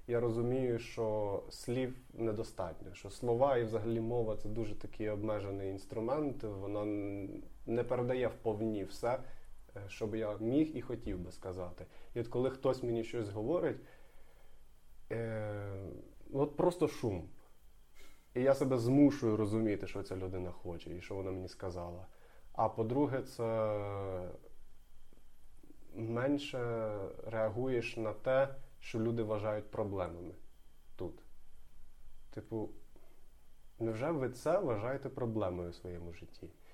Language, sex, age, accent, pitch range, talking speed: Ukrainian, male, 20-39, native, 95-120 Hz, 120 wpm